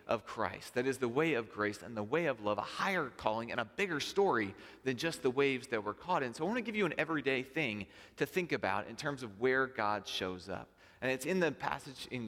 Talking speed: 260 wpm